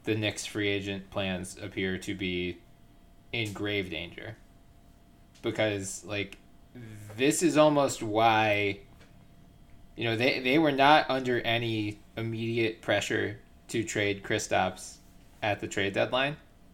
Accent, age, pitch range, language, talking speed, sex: American, 20-39, 100-115 Hz, English, 120 wpm, male